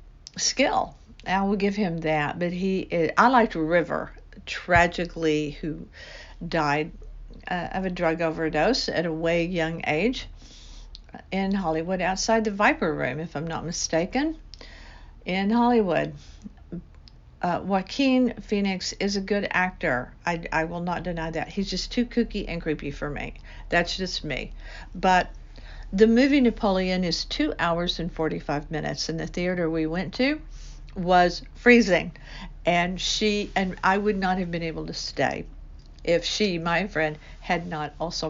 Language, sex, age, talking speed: English, female, 60-79, 150 wpm